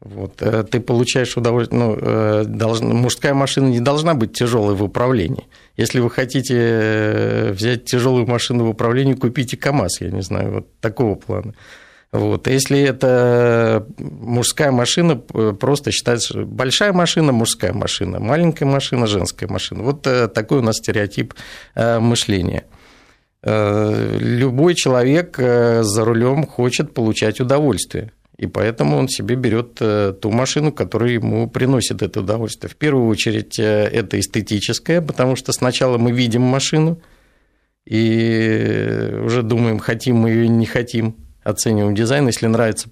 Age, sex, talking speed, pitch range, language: 50-69, male, 130 wpm, 110-130 Hz, Russian